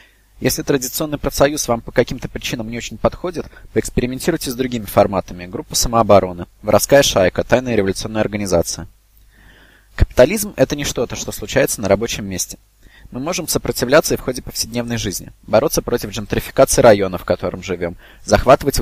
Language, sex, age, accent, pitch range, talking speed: Russian, male, 20-39, native, 100-130 Hz, 145 wpm